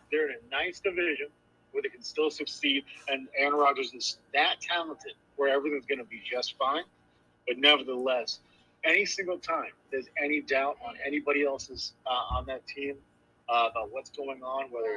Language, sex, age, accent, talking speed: English, male, 40-59, American, 175 wpm